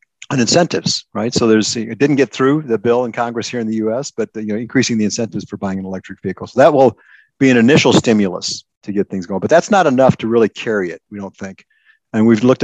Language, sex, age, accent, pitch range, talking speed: English, male, 50-69, American, 105-130 Hz, 255 wpm